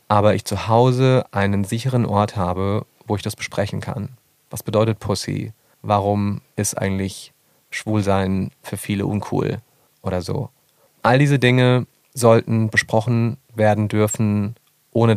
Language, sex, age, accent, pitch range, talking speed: German, male, 30-49, German, 100-120 Hz, 130 wpm